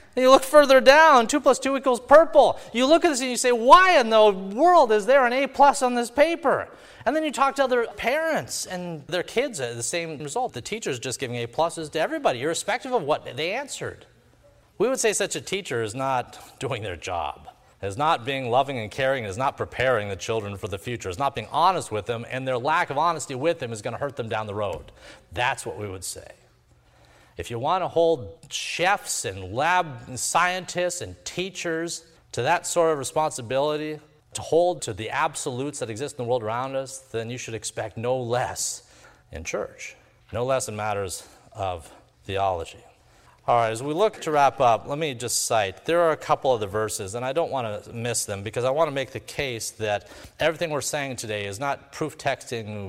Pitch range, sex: 120-185 Hz, male